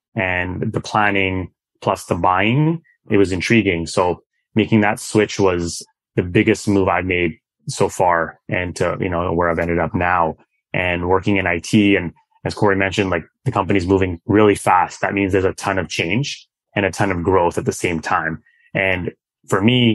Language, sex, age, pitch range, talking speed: English, male, 20-39, 90-110 Hz, 190 wpm